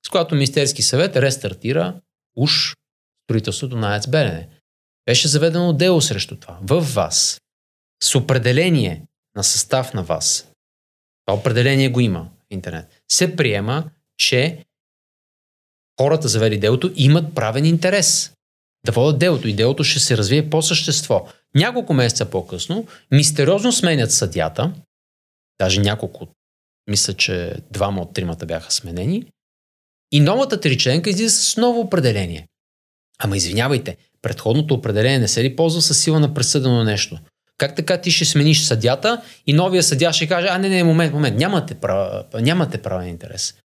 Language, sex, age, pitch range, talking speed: Bulgarian, male, 30-49, 110-160 Hz, 145 wpm